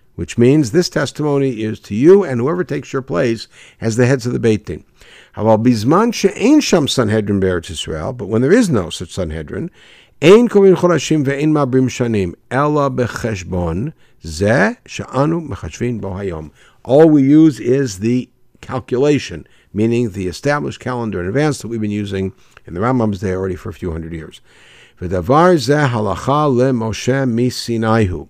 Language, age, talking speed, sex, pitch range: English, 60-79, 110 wpm, male, 110-145 Hz